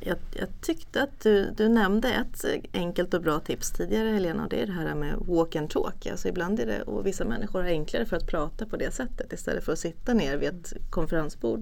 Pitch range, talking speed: 165-215 Hz, 240 wpm